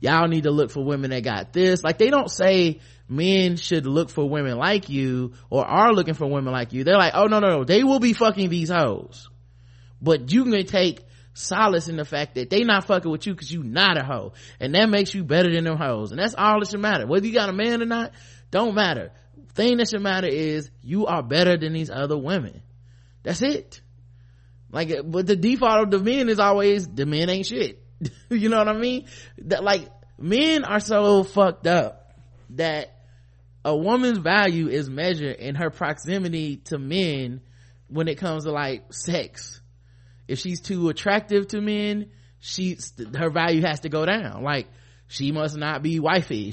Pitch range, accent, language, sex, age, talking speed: 130-195 Hz, American, English, male, 20-39, 200 wpm